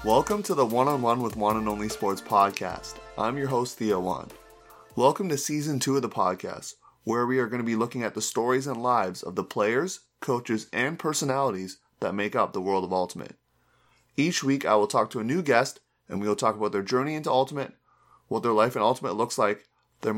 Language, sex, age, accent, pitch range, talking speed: English, male, 30-49, American, 105-135 Hz, 215 wpm